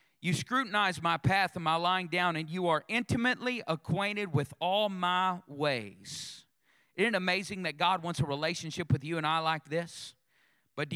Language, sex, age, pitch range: English, male, 40-59, 145-190 Hz